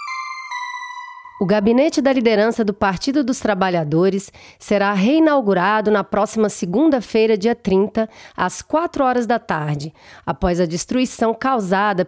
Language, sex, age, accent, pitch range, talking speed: Portuguese, female, 30-49, Brazilian, 185-240 Hz, 120 wpm